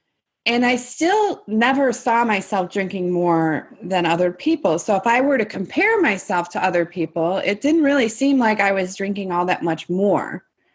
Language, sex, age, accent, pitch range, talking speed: English, female, 30-49, American, 160-205 Hz, 185 wpm